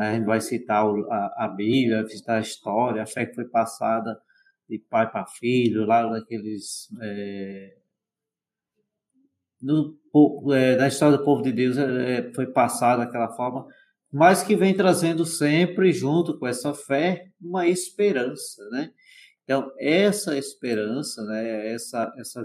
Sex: male